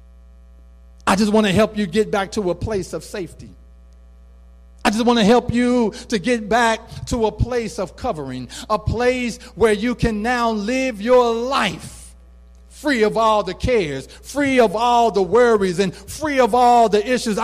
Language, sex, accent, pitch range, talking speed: English, male, American, 195-260 Hz, 180 wpm